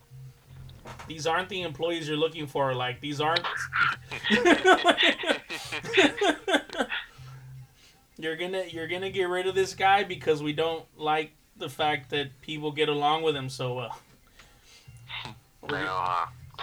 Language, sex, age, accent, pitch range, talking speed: English, male, 20-39, American, 130-160 Hz, 120 wpm